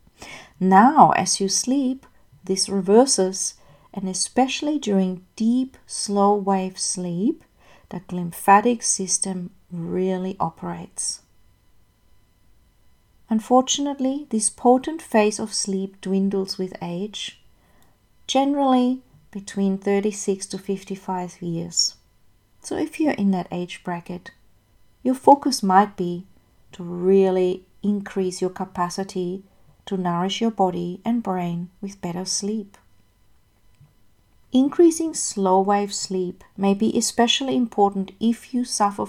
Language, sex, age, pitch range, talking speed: English, female, 40-59, 180-230 Hz, 105 wpm